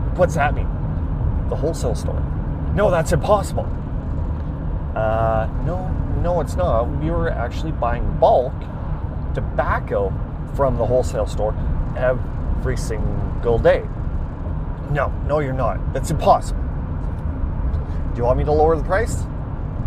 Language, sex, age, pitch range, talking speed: English, male, 30-49, 75-105 Hz, 125 wpm